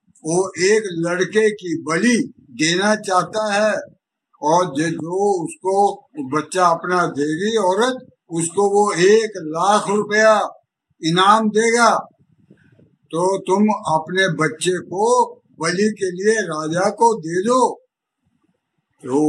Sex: male